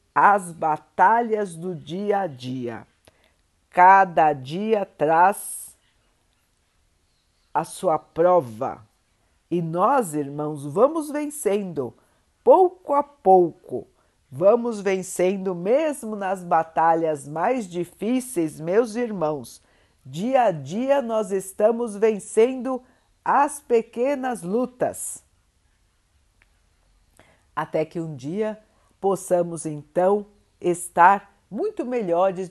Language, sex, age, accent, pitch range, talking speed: Portuguese, female, 50-69, Brazilian, 150-215 Hz, 85 wpm